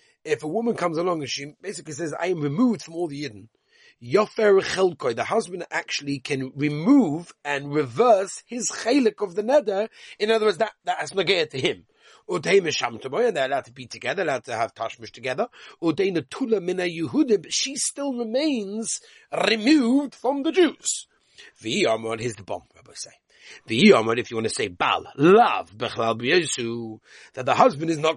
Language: English